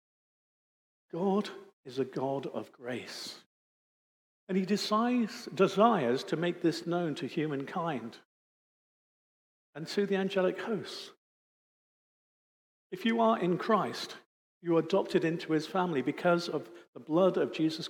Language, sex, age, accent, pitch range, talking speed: English, male, 50-69, British, 145-190 Hz, 125 wpm